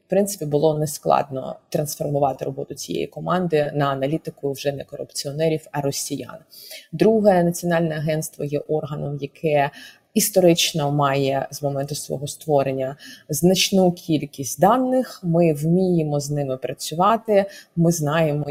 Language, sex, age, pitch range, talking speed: Ukrainian, female, 20-39, 140-165 Hz, 120 wpm